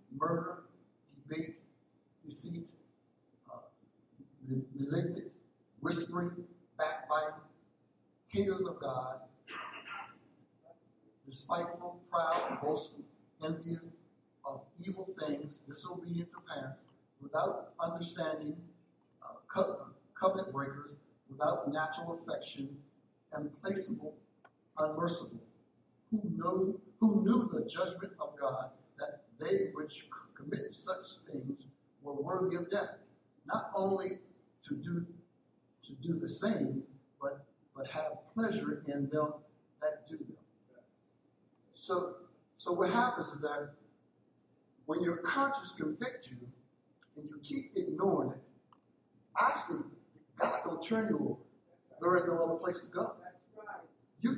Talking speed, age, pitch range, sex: 105 wpm, 60-79, 150-190 Hz, male